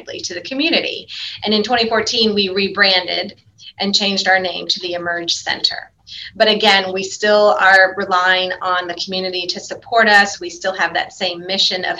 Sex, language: female, English